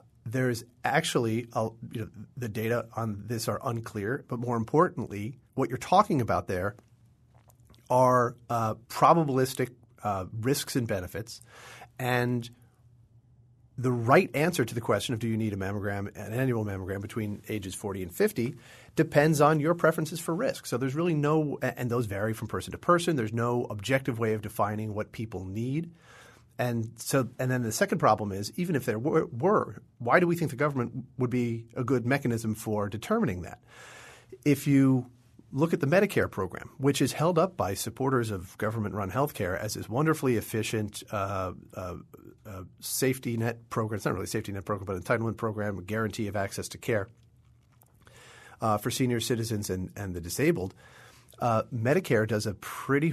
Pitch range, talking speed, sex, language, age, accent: 105-130 Hz, 170 wpm, male, English, 40-59, American